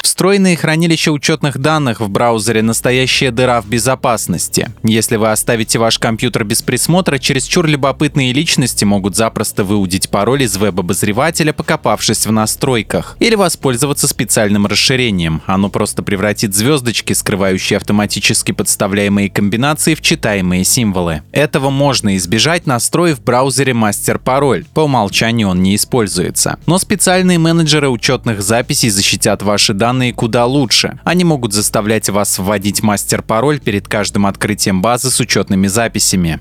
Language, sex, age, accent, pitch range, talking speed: Russian, male, 20-39, native, 105-140 Hz, 130 wpm